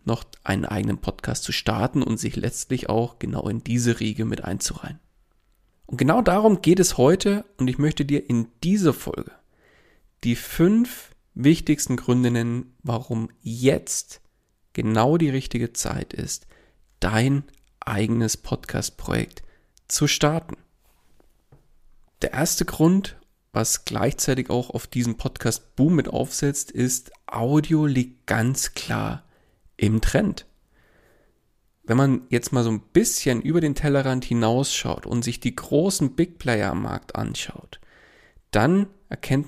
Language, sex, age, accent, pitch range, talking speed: German, male, 40-59, German, 115-150 Hz, 130 wpm